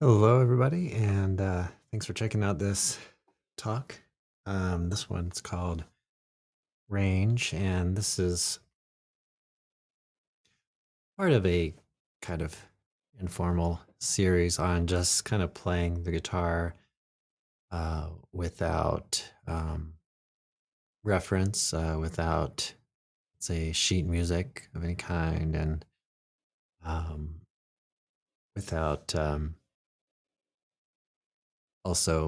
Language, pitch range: English, 80-95 Hz